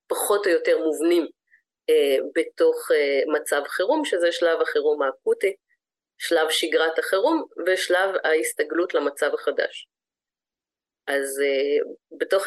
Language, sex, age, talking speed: Hebrew, female, 30-49, 110 wpm